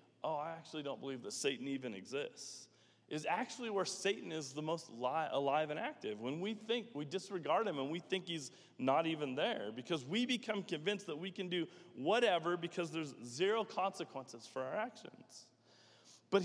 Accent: American